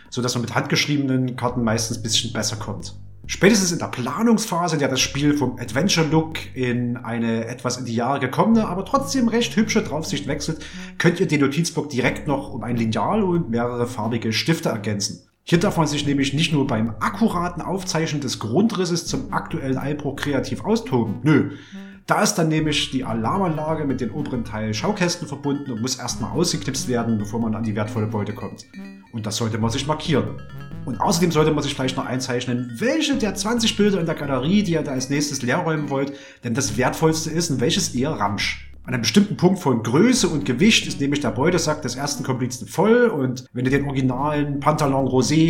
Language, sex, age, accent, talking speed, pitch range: German, male, 30-49, German, 195 wpm, 120-160 Hz